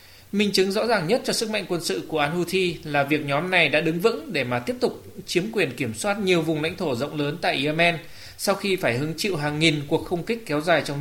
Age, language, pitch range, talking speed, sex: 20-39, Vietnamese, 150-185 Hz, 265 wpm, male